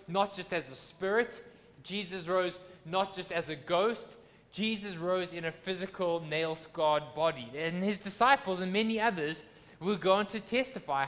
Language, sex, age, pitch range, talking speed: English, male, 20-39, 155-195 Hz, 155 wpm